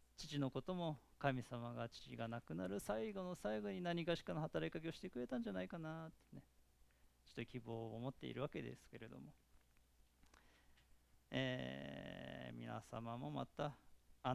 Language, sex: Japanese, male